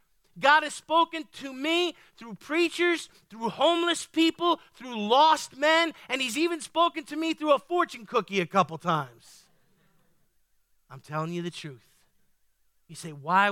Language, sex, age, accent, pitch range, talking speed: English, male, 40-59, American, 175-275 Hz, 150 wpm